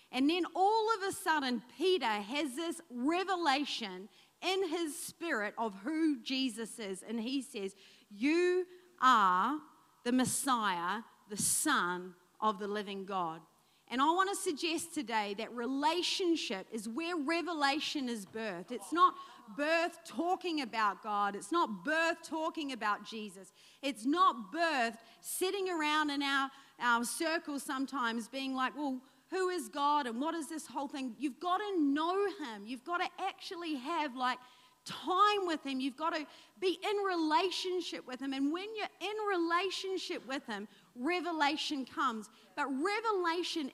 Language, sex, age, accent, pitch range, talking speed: English, female, 40-59, Australian, 250-340 Hz, 145 wpm